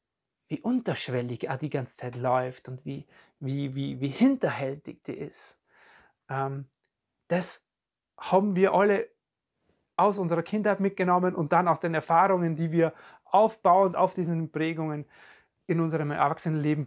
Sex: male